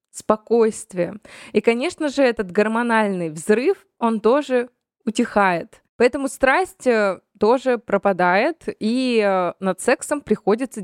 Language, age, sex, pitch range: Russian, 20-39, female, 200-260 Hz